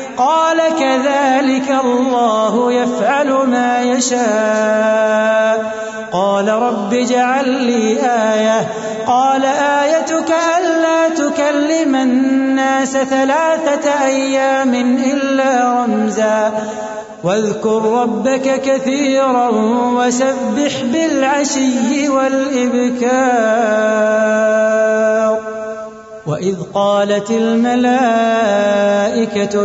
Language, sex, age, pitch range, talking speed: Urdu, male, 30-49, 215-260 Hz, 60 wpm